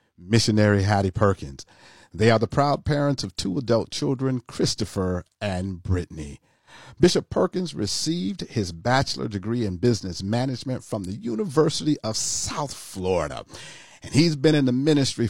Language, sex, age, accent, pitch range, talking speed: English, male, 50-69, American, 100-135 Hz, 140 wpm